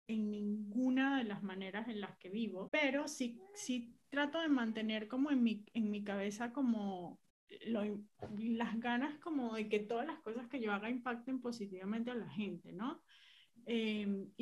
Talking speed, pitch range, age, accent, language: 170 wpm, 200-235 Hz, 30-49, Colombian, Spanish